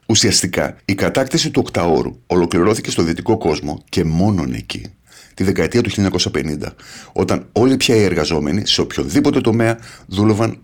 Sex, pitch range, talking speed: male, 90-125 Hz, 140 wpm